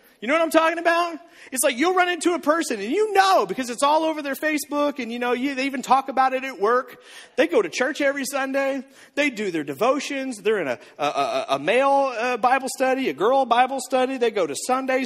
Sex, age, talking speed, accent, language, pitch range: male, 40-59, 240 wpm, American, English, 230-325 Hz